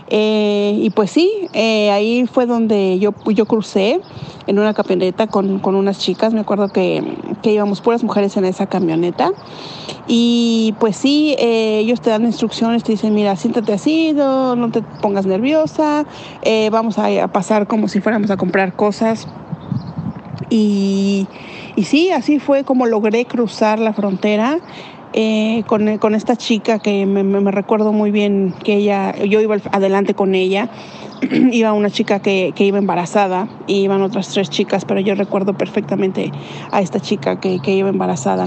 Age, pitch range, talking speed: 40-59, 195-235 Hz, 170 wpm